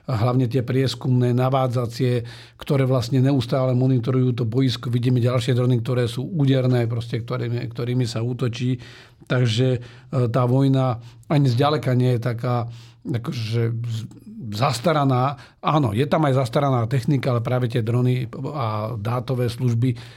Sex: male